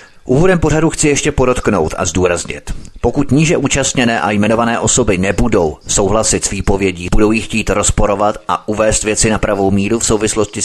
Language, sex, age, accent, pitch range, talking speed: Czech, male, 30-49, native, 100-125 Hz, 165 wpm